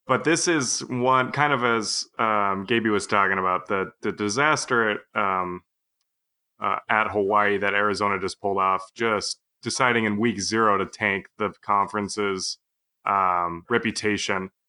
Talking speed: 145 wpm